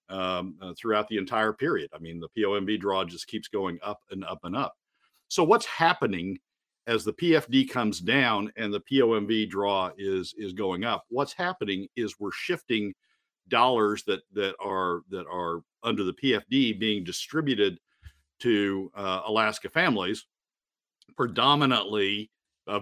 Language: English